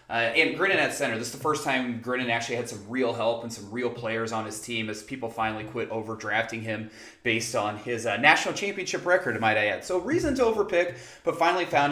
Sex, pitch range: male, 115-135 Hz